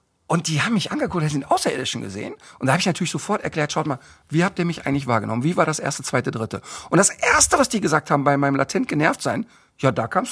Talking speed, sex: 255 wpm, male